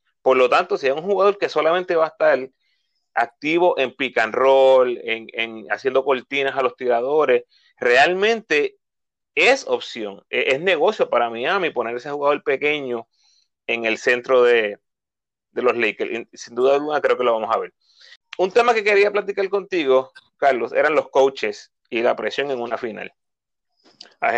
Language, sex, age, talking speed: Spanish, male, 30-49, 170 wpm